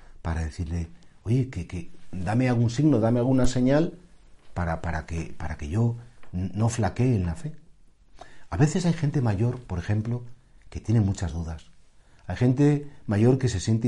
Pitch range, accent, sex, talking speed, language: 95-130 Hz, Spanish, male, 170 wpm, Spanish